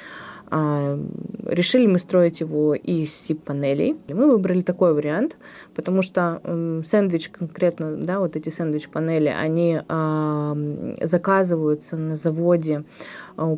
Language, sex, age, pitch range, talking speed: Russian, female, 20-39, 155-195 Hz, 100 wpm